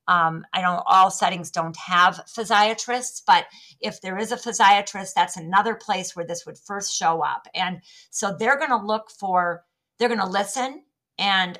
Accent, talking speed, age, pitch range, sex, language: American, 180 wpm, 50-69, 175-220 Hz, female, English